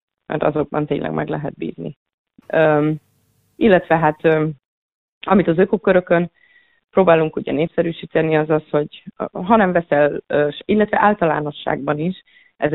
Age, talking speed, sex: 30-49, 115 wpm, female